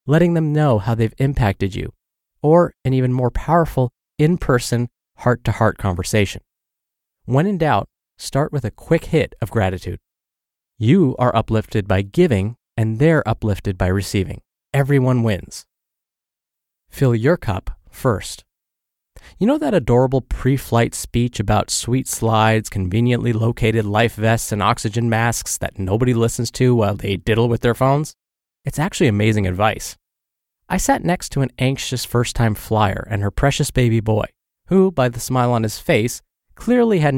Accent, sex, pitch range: American, male, 105-140 Hz